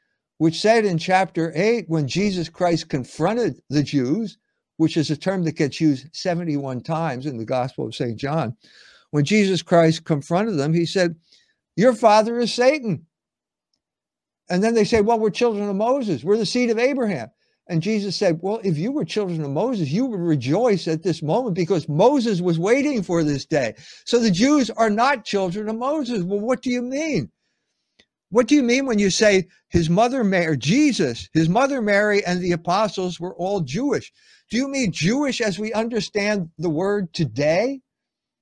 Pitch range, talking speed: 165-235 Hz, 185 wpm